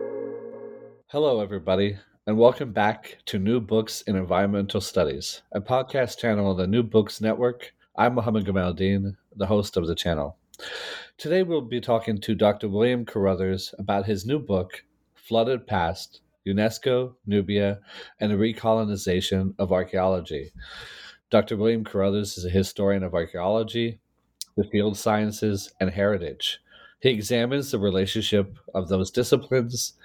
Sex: male